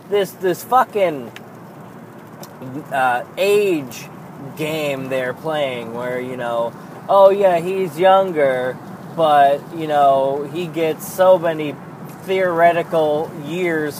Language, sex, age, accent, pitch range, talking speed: English, male, 20-39, American, 155-195 Hz, 105 wpm